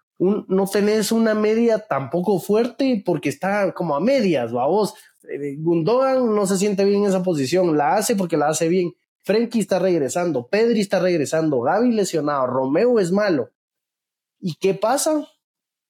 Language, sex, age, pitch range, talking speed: English, male, 20-39, 170-220 Hz, 160 wpm